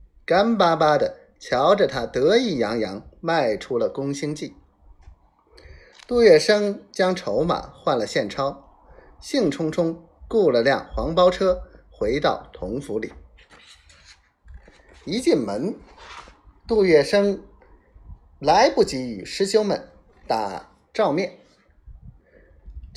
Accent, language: native, Chinese